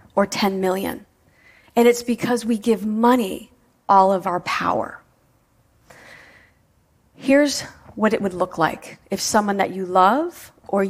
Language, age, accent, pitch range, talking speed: French, 40-59, American, 190-240 Hz, 140 wpm